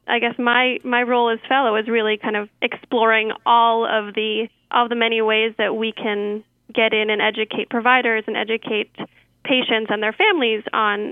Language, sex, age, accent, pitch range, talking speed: English, female, 10-29, American, 220-240 Hz, 185 wpm